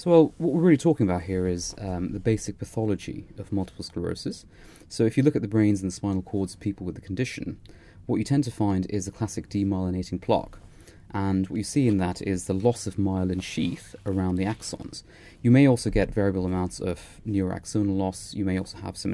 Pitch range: 95-110 Hz